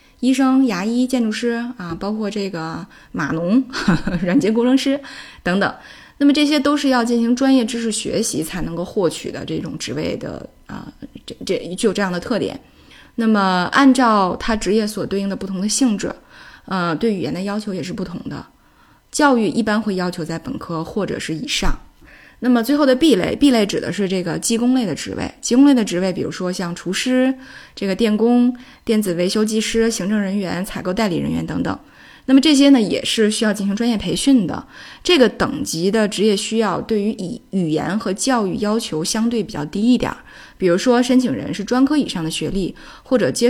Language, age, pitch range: Chinese, 20-39, 190-250 Hz